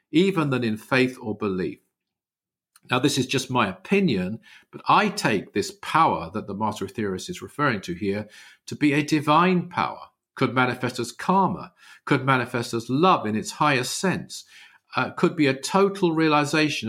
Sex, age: male, 50-69